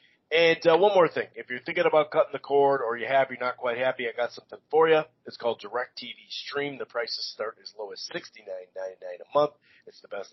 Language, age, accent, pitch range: English, 40-59, American, 120-155 Hz